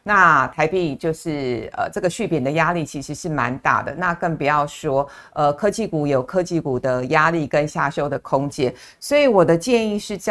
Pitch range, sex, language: 150-195 Hz, female, Chinese